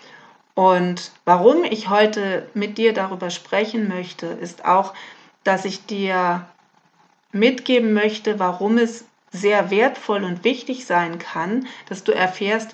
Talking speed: 125 wpm